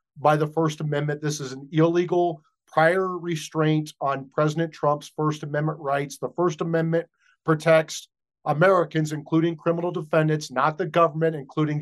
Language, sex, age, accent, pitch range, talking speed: English, male, 40-59, American, 155-175 Hz, 140 wpm